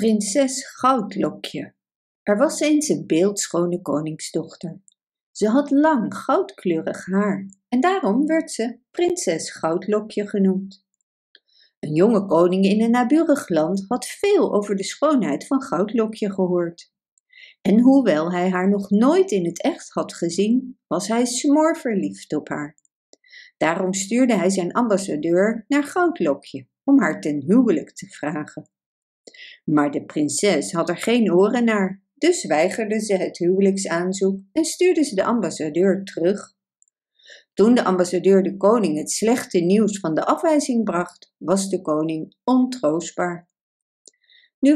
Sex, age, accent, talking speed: female, 50-69, Dutch, 135 wpm